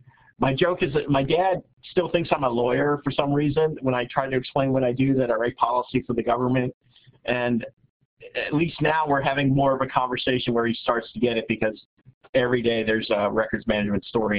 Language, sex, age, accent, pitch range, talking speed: English, male, 50-69, American, 120-135 Hz, 220 wpm